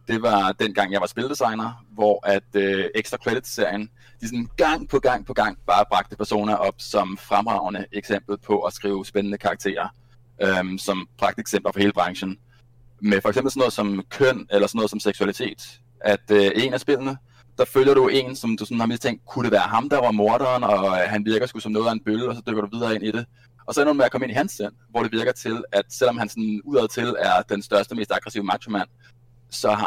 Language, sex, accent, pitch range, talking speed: Danish, male, native, 100-120 Hz, 230 wpm